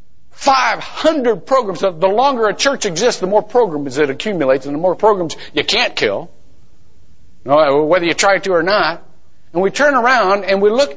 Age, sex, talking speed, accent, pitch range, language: 50-69, male, 175 wpm, American, 135-210 Hz, English